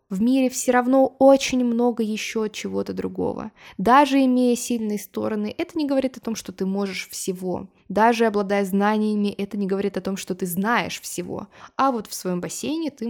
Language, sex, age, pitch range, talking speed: Russian, female, 20-39, 195-245 Hz, 185 wpm